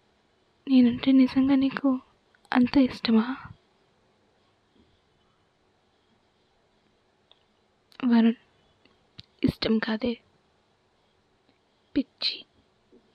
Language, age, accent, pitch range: Telugu, 20-39, native, 235-260 Hz